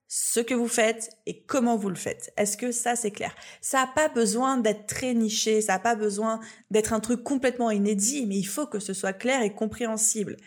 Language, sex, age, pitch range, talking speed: French, female, 20-39, 215-265 Hz, 225 wpm